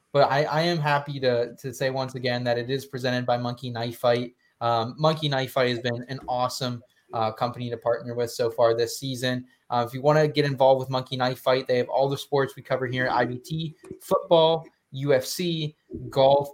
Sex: male